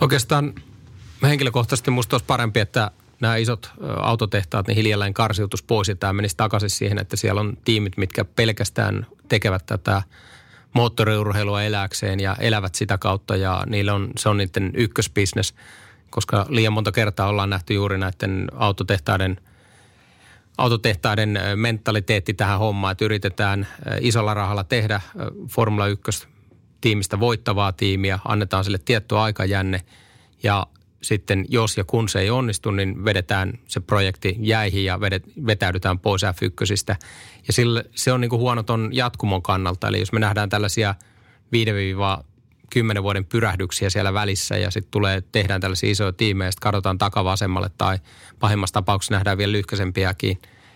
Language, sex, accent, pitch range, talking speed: Finnish, male, native, 100-115 Hz, 140 wpm